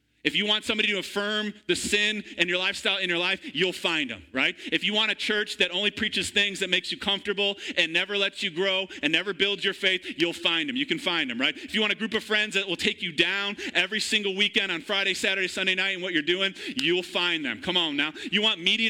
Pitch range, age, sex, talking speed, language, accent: 155-210 Hz, 30-49, male, 260 wpm, English, American